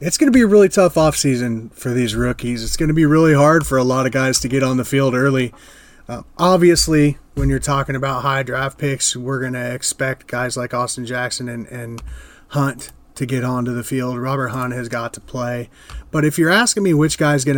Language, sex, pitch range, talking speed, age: English, male, 125-140 Hz, 230 wpm, 30-49